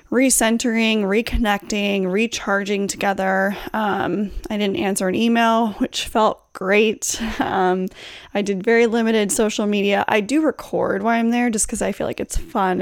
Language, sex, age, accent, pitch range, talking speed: English, female, 20-39, American, 200-245 Hz, 155 wpm